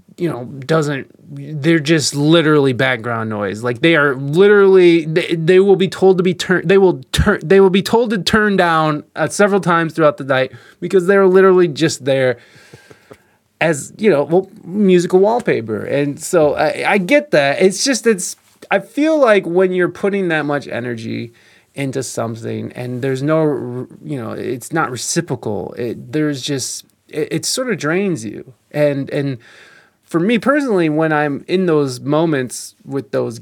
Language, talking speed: English, 170 wpm